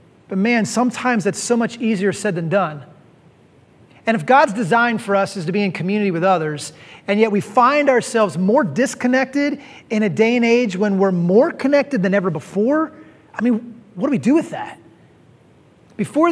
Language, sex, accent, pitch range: English, male, American, 175-230 Hz